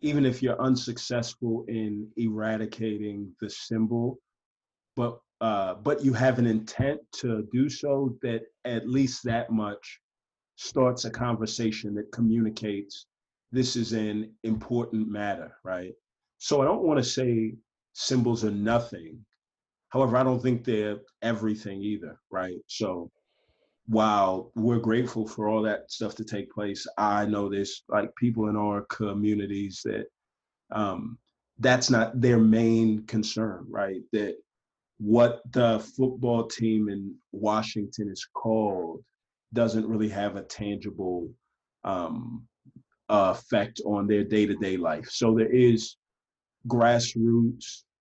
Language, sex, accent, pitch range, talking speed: English, male, American, 105-120 Hz, 130 wpm